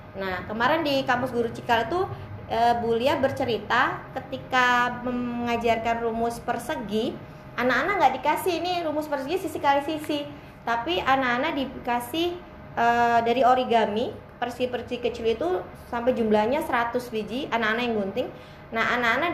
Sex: female